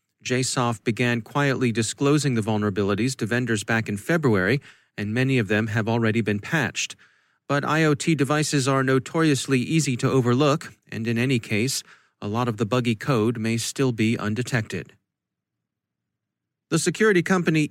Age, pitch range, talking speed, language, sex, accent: 40-59, 115-140 Hz, 150 wpm, English, male, American